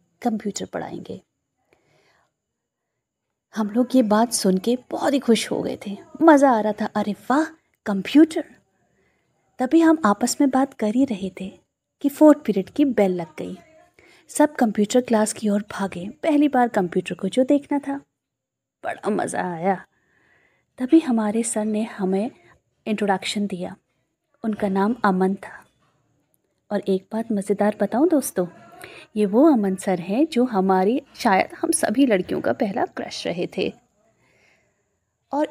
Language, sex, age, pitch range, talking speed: Hindi, female, 30-49, 190-260 Hz, 145 wpm